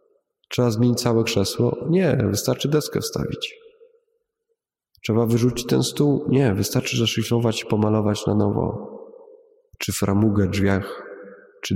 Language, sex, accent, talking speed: Polish, male, native, 115 wpm